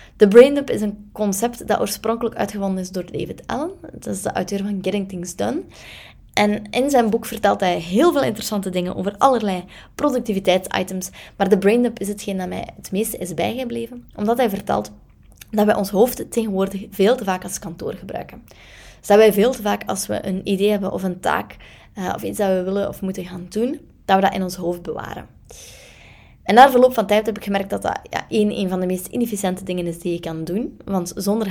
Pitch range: 185-225 Hz